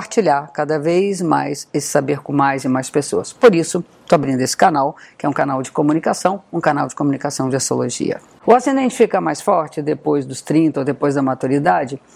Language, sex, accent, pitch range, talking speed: Portuguese, female, Brazilian, 150-210 Hz, 200 wpm